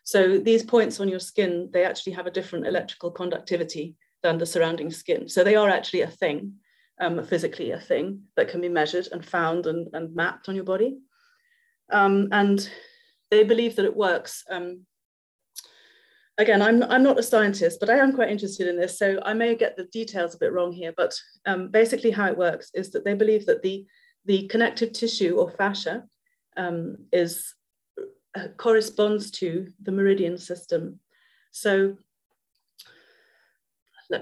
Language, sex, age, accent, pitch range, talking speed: English, female, 30-49, British, 180-230 Hz, 170 wpm